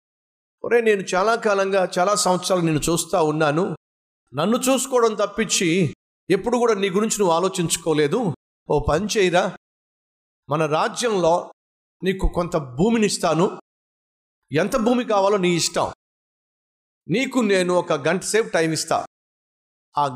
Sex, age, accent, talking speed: male, 50-69, native, 120 wpm